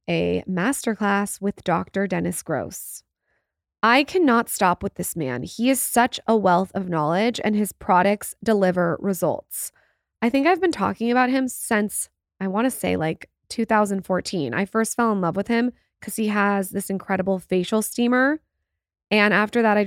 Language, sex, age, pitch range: English, female, 20-39, 185-230 Hz